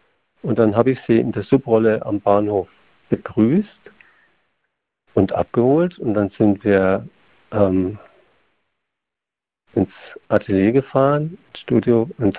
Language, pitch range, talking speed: German, 110-135 Hz, 115 wpm